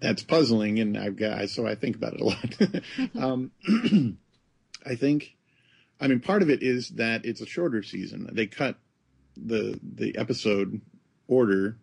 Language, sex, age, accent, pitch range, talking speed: English, male, 40-59, American, 100-115 Hz, 160 wpm